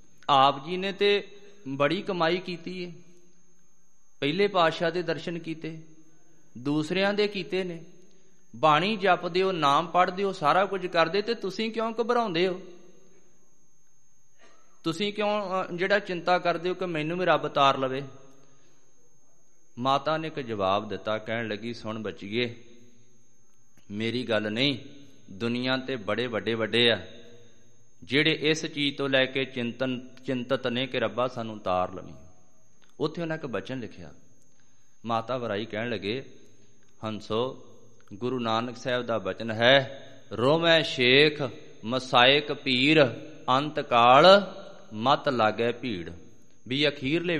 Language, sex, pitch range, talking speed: Punjabi, male, 120-170 Hz, 130 wpm